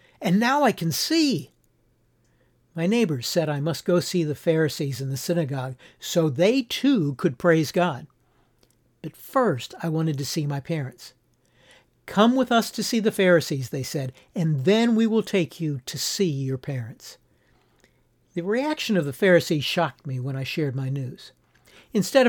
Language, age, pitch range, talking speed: English, 60-79, 135-195 Hz, 170 wpm